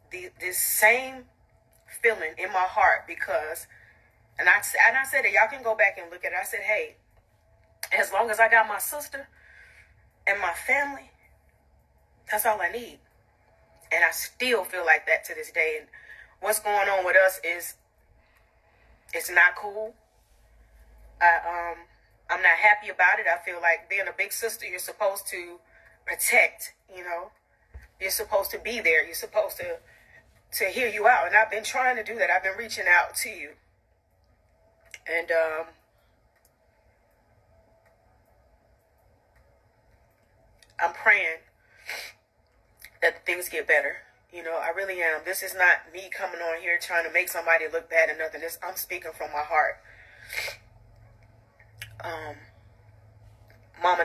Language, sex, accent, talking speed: English, female, American, 155 wpm